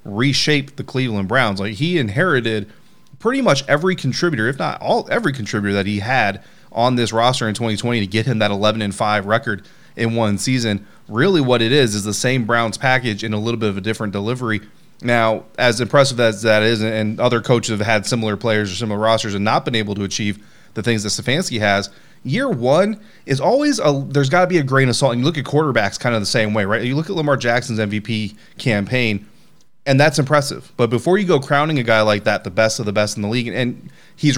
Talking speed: 230 wpm